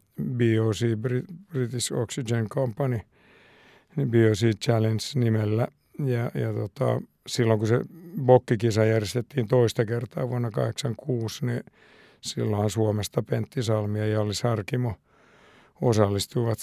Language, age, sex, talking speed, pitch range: Finnish, 60-79, male, 100 wpm, 110-125 Hz